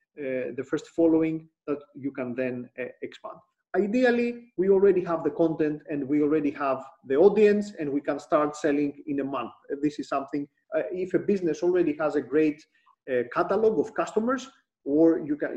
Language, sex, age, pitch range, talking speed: English, male, 40-59, 150-220 Hz, 190 wpm